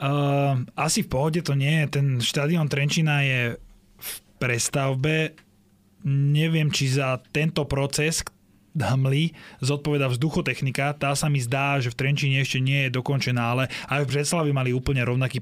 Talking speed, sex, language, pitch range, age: 150 wpm, male, Slovak, 130-150 Hz, 20-39